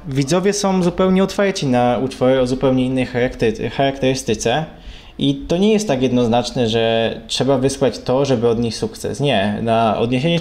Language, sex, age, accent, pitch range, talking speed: Polish, male, 20-39, native, 120-160 Hz, 150 wpm